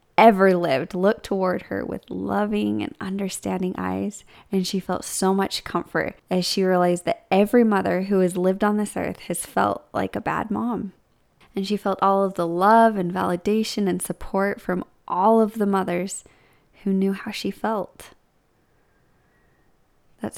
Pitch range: 180-205 Hz